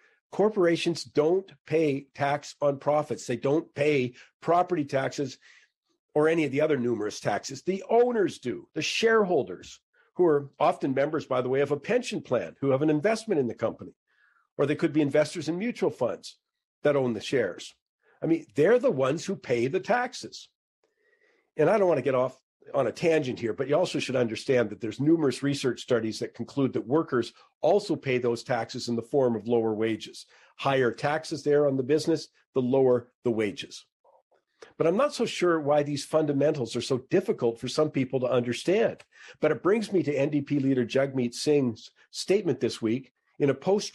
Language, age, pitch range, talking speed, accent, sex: English, 50-69, 125-170 Hz, 190 wpm, American, male